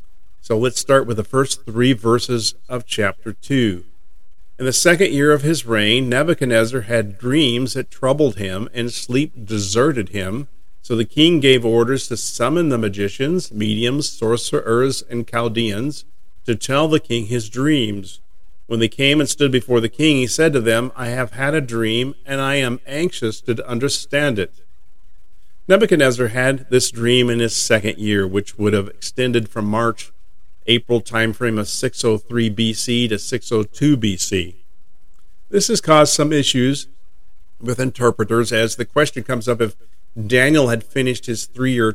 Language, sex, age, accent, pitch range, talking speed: English, male, 50-69, American, 110-135 Hz, 160 wpm